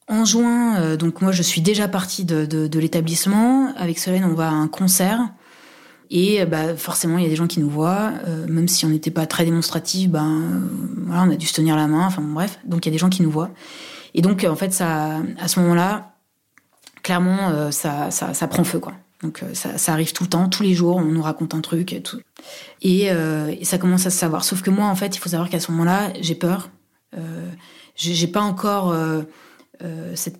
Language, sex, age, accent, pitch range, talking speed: French, female, 30-49, French, 160-190 Hz, 245 wpm